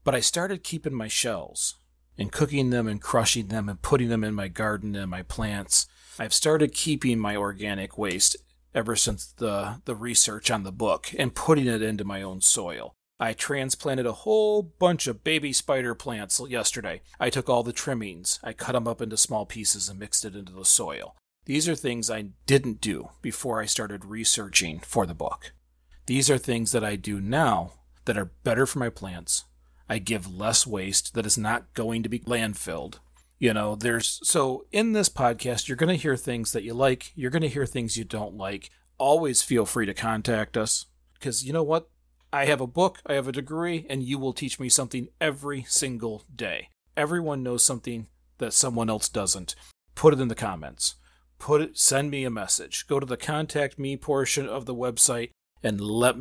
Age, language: 40-59, English